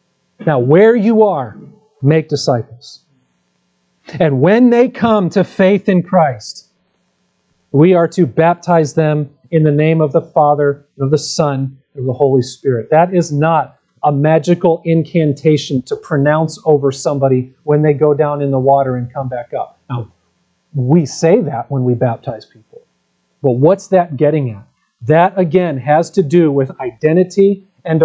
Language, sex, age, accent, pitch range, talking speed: English, male, 40-59, American, 125-180 Hz, 160 wpm